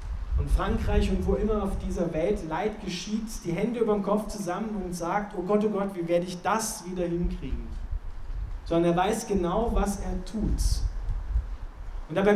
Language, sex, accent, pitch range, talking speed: German, male, German, 140-215 Hz, 180 wpm